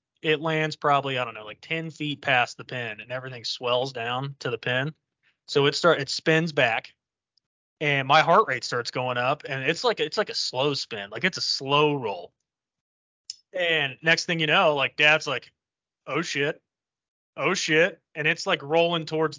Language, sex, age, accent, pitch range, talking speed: English, male, 20-39, American, 130-155 Hz, 190 wpm